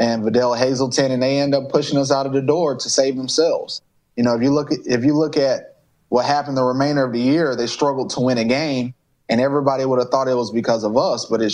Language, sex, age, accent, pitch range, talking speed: English, male, 20-39, American, 120-140 Hz, 265 wpm